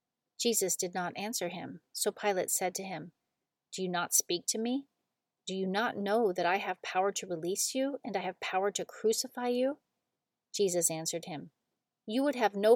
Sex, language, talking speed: female, English, 195 wpm